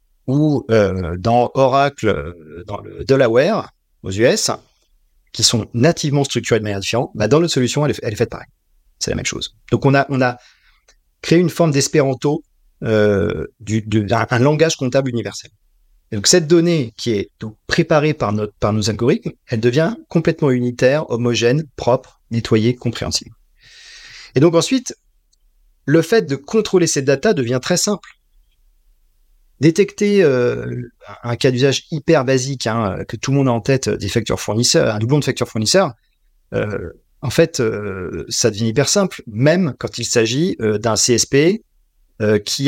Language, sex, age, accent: French, male, 40-59, French